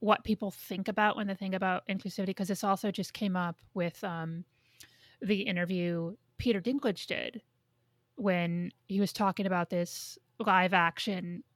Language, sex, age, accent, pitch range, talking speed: English, female, 30-49, American, 180-220 Hz, 150 wpm